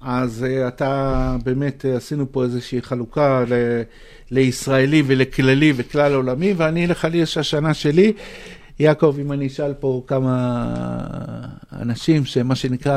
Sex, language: male, Hebrew